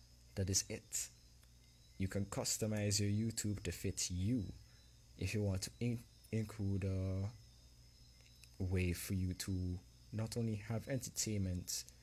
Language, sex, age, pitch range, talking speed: English, male, 20-39, 85-105 Hz, 125 wpm